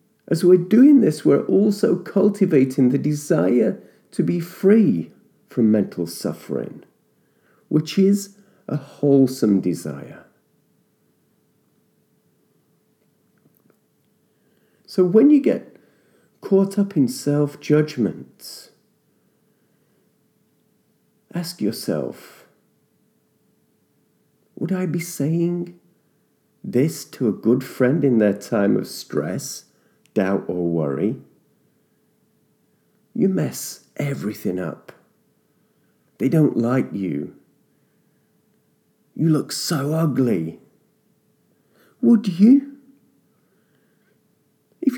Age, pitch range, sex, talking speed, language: 50-69, 135-205 Hz, male, 85 wpm, English